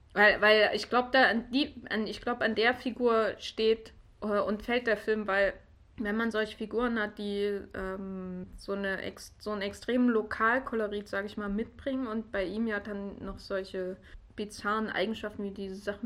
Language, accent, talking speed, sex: German, German, 170 wpm, female